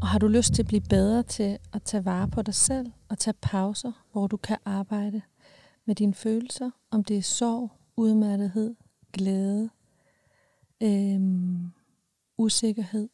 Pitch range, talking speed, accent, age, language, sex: 200-225 Hz, 145 wpm, native, 40-59, Danish, female